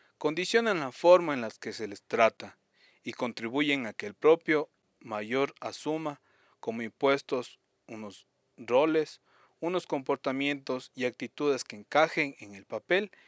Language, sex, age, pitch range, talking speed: Spanish, male, 40-59, 110-150 Hz, 135 wpm